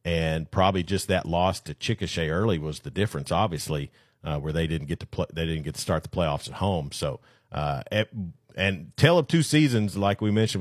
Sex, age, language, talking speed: male, 50-69, English, 215 wpm